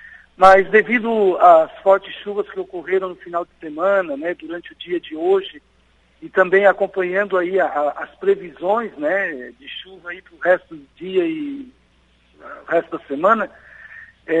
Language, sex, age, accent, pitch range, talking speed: Portuguese, male, 60-79, Brazilian, 170-205 Hz, 145 wpm